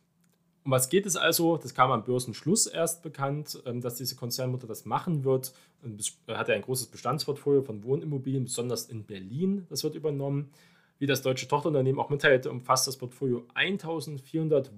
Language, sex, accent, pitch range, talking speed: German, male, German, 115-145 Hz, 165 wpm